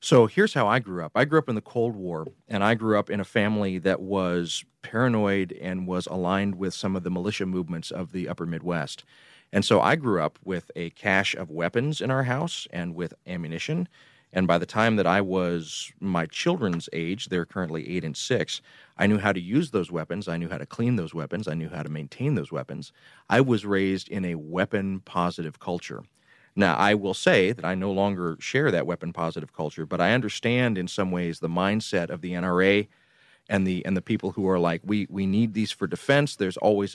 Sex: male